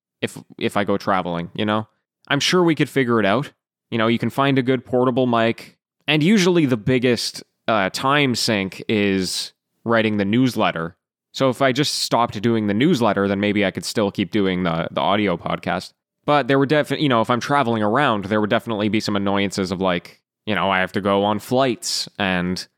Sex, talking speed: male, 210 wpm